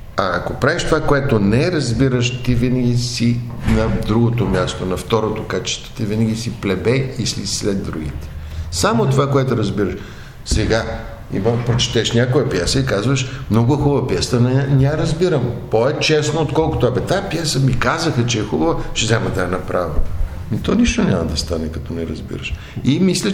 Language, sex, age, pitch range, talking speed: Bulgarian, male, 60-79, 110-145 Hz, 165 wpm